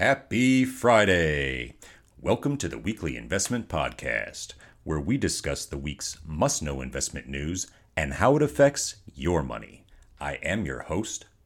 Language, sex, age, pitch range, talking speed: English, male, 40-59, 70-90 Hz, 135 wpm